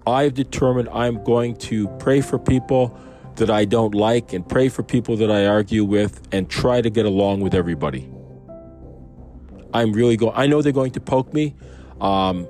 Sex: male